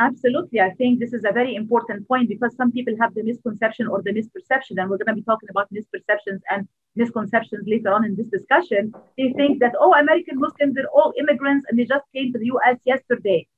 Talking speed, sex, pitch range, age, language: 220 wpm, female, 220-255 Hz, 40-59, Arabic